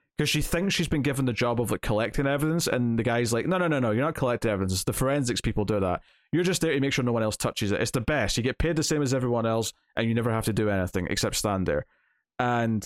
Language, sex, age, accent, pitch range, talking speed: English, male, 20-39, British, 105-130 Hz, 280 wpm